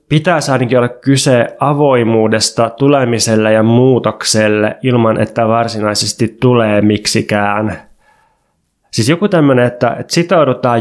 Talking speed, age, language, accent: 105 wpm, 20-39, Finnish, native